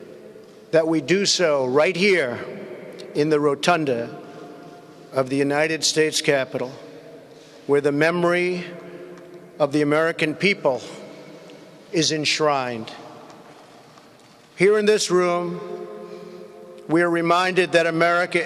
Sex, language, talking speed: male, English, 105 wpm